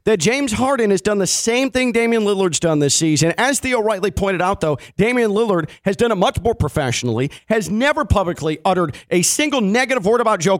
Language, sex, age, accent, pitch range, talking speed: English, male, 40-59, American, 180-245 Hz, 210 wpm